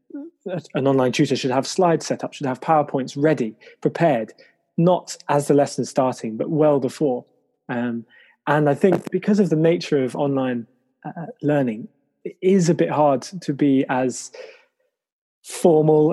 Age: 20-39